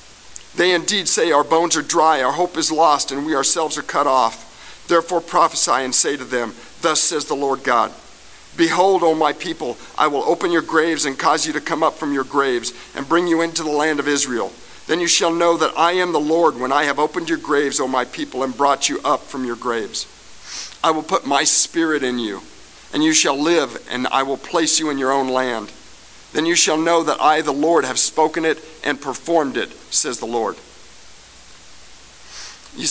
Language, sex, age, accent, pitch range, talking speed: English, male, 50-69, American, 140-170 Hz, 215 wpm